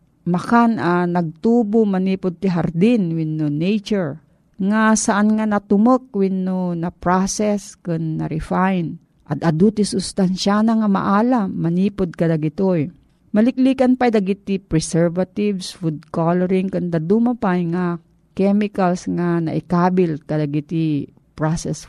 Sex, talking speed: female, 125 wpm